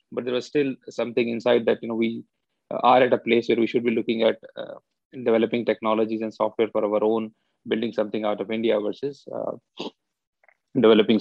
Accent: Indian